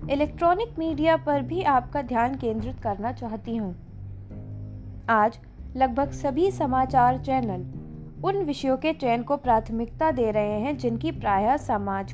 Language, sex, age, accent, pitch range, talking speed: Hindi, female, 20-39, native, 210-290 Hz, 135 wpm